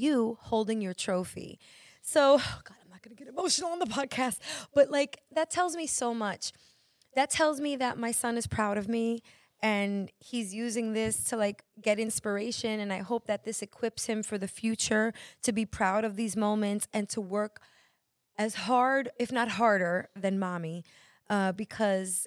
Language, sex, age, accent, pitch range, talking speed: English, female, 20-39, American, 195-240 Hz, 185 wpm